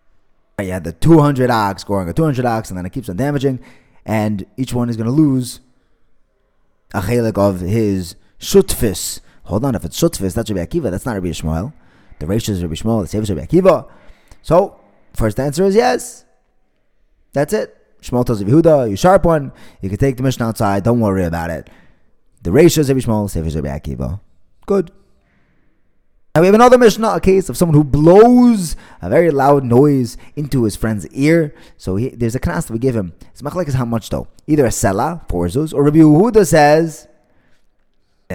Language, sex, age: English, male, 20-39